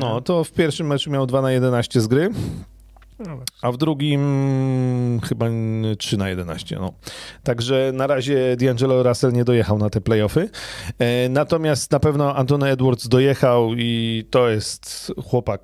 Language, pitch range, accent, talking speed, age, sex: Polish, 110-140 Hz, native, 150 wpm, 30-49, male